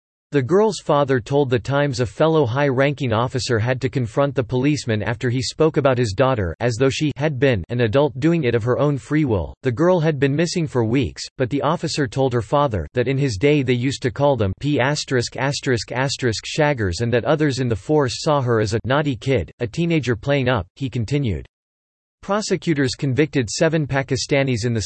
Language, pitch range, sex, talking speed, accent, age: English, 120-145 Hz, male, 200 wpm, American, 40-59